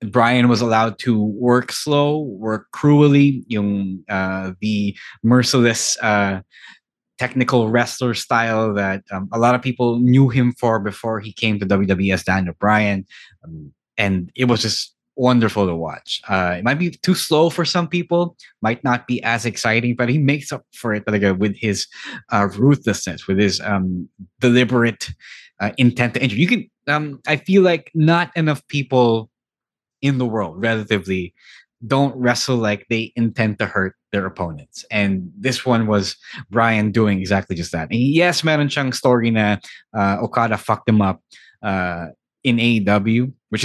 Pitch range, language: 100-125 Hz, English